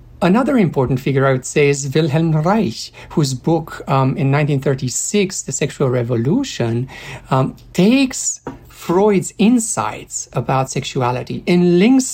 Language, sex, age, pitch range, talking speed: English, male, 50-69, 125-180 Hz, 125 wpm